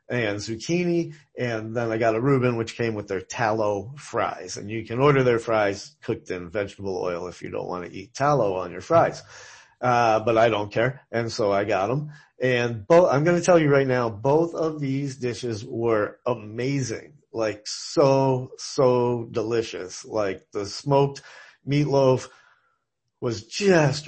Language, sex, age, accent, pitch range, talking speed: English, male, 30-49, American, 110-130 Hz, 170 wpm